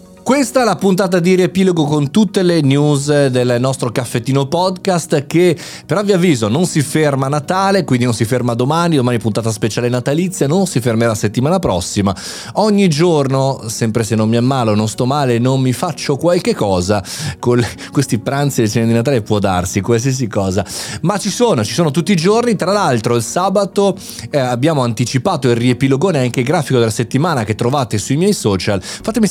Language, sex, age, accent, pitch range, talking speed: Italian, male, 30-49, native, 115-165 Hz, 185 wpm